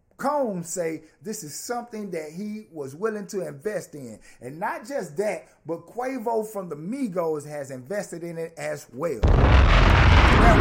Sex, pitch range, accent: male, 150-200 Hz, American